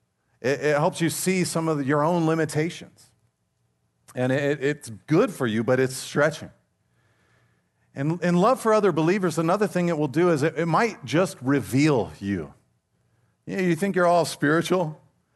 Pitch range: 145-205 Hz